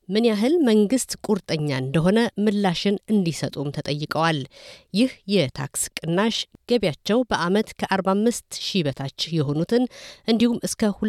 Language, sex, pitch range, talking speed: Amharic, female, 150-215 Hz, 95 wpm